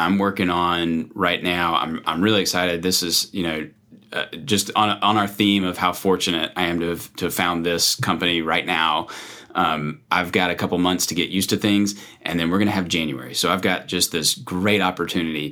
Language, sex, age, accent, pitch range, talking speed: English, male, 30-49, American, 85-100 Hz, 225 wpm